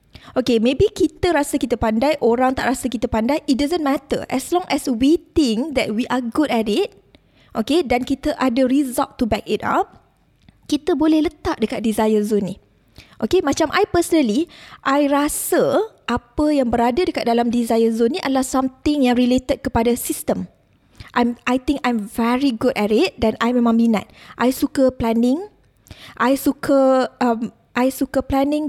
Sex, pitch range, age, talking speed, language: female, 235-280 Hz, 20-39, 170 wpm, Malay